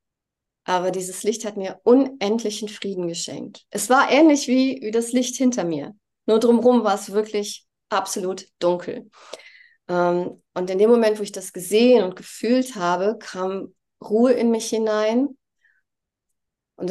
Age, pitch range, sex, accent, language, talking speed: 30-49, 185-235 Hz, female, German, German, 140 wpm